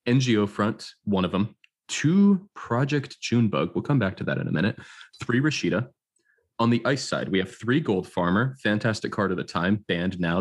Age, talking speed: 20-39, 195 wpm